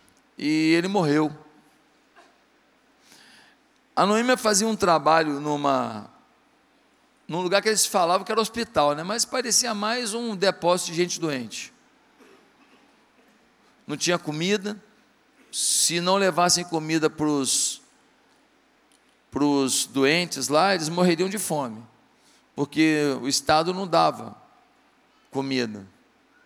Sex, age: male, 50-69